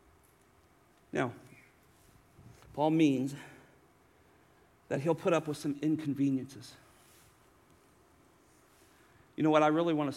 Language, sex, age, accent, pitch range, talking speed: English, male, 40-59, American, 145-245 Hz, 100 wpm